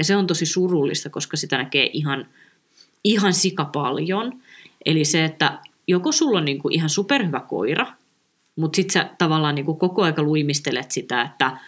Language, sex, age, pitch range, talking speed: Finnish, female, 20-39, 150-185 Hz, 165 wpm